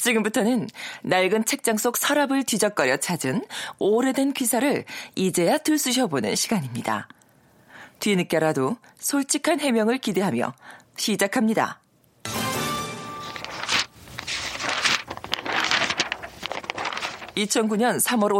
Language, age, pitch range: Korean, 40-59, 195-250 Hz